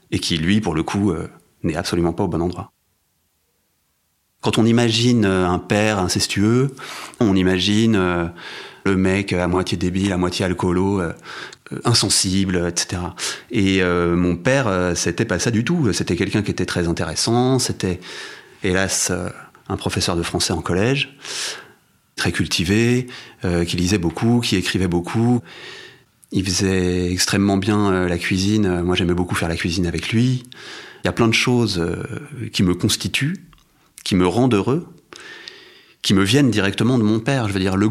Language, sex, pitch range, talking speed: French, male, 90-110 Hz, 170 wpm